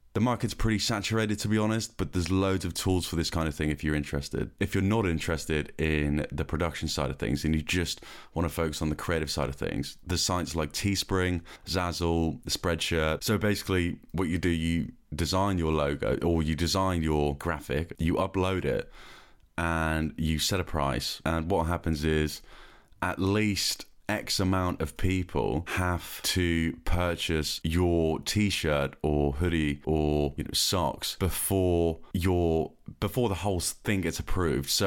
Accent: British